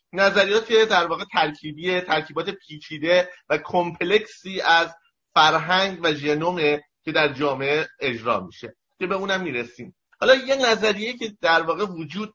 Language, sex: Persian, male